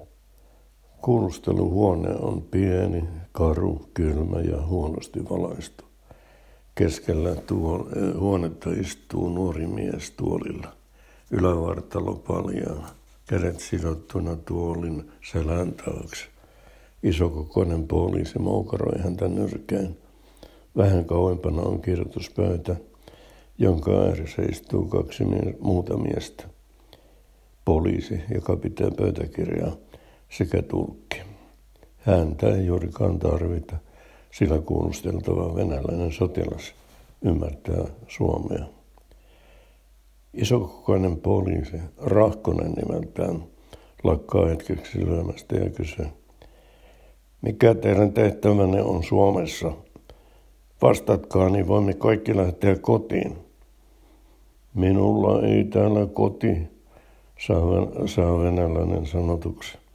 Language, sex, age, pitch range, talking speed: Finnish, male, 60-79, 85-100 Hz, 80 wpm